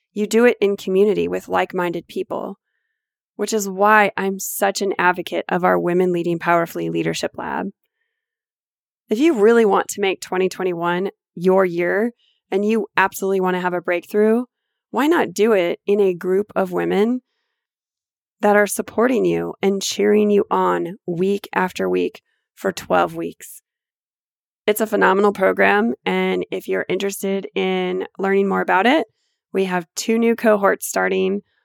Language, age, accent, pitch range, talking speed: English, 20-39, American, 180-215 Hz, 155 wpm